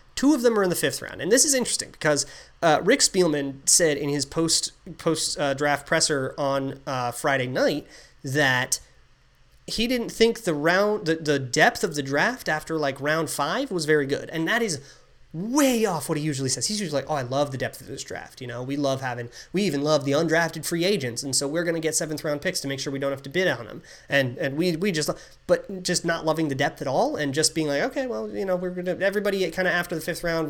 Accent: American